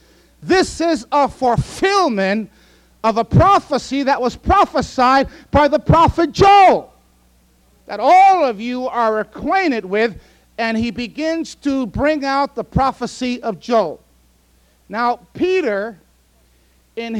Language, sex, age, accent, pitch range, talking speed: English, male, 50-69, American, 200-300 Hz, 120 wpm